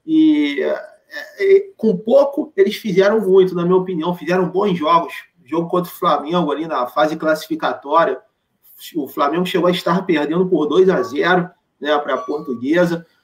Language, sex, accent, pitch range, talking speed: Portuguese, male, Brazilian, 175-220 Hz, 160 wpm